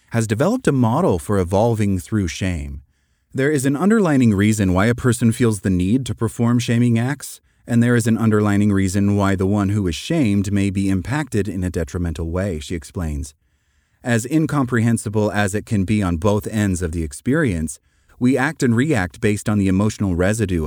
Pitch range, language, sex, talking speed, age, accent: 95-130 Hz, English, male, 190 wpm, 30-49, American